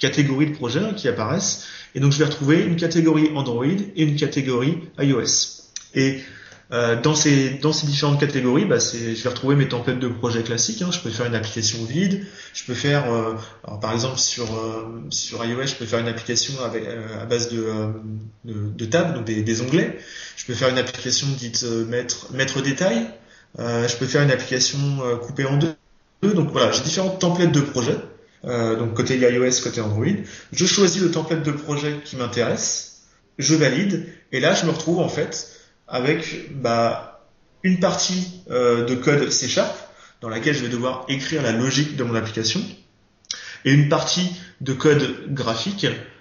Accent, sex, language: French, male, French